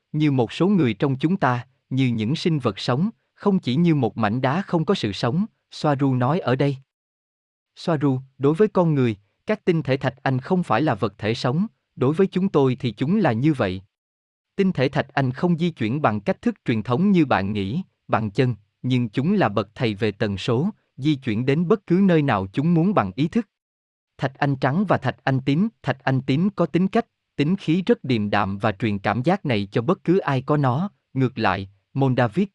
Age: 20-39